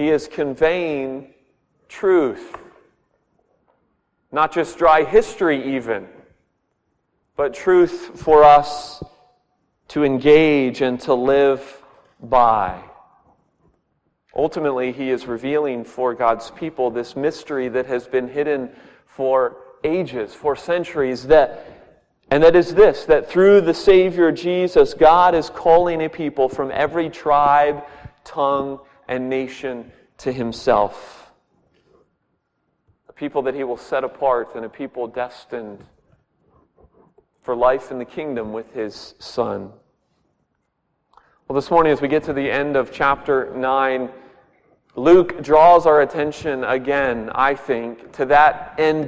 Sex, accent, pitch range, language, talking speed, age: male, American, 130-165 Hz, English, 120 wpm, 40-59